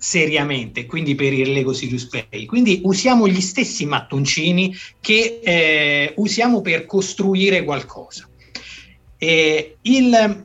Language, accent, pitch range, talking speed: Italian, native, 140-190 Hz, 115 wpm